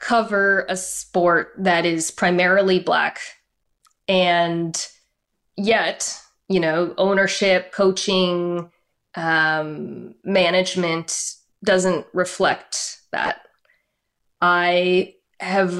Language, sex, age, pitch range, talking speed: English, female, 20-39, 175-205 Hz, 75 wpm